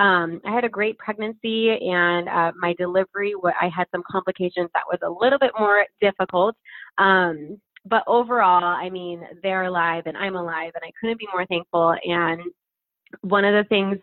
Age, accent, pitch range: 20-39, American, 175-205 Hz